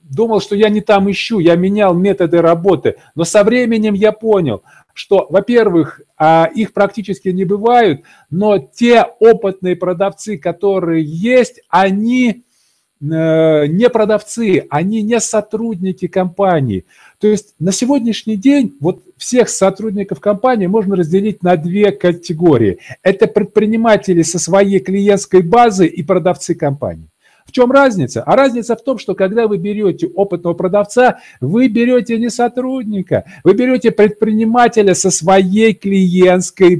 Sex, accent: male, native